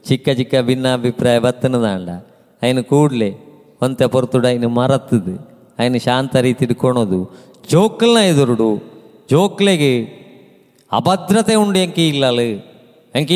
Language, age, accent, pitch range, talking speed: Kannada, 30-49, native, 115-140 Hz, 90 wpm